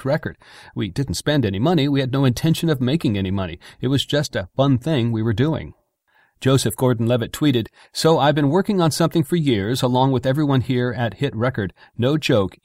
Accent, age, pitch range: American, 40-59, 120-155 Hz